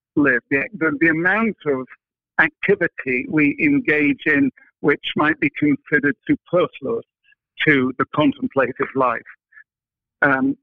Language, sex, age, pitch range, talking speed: English, male, 60-79, 140-220 Hz, 105 wpm